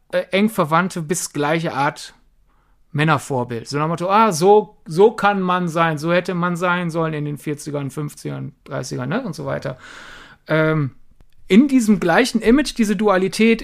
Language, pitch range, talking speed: German, 170-220 Hz, 155 wpm